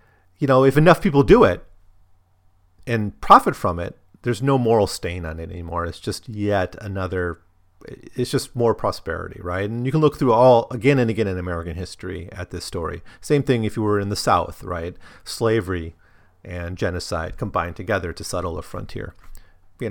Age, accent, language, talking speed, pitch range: 40-59, American, English, 185 wpm, 90-120 Hz